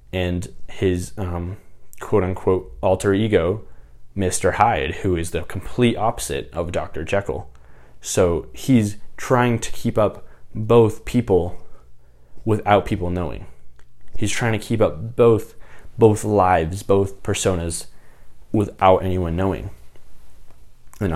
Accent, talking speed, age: American, 120 wpm, 20-39